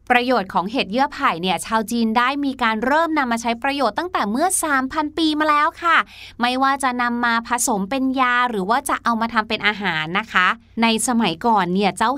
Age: 20-39